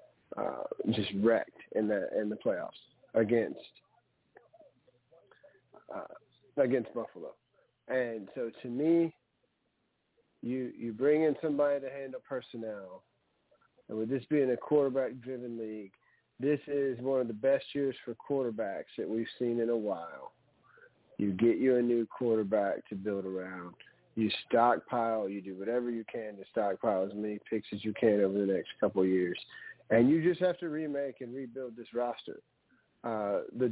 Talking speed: 160 wpm